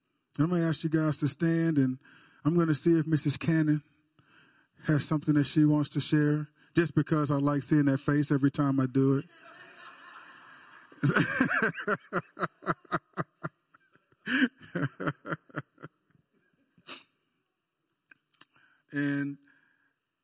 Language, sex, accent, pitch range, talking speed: English, male, American, 140-155 Hz, 105 wpm